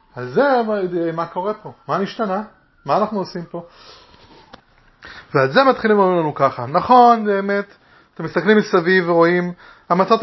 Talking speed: 145 wpm